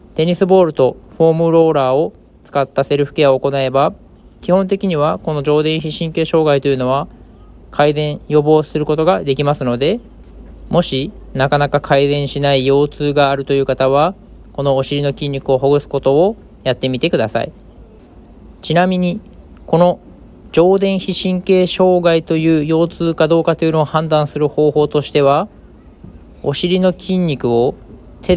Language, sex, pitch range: Japanese, male, 140-170 Hz